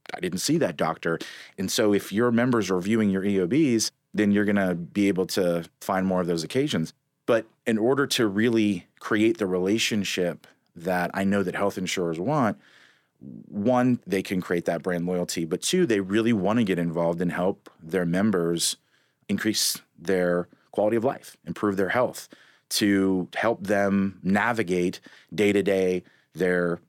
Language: English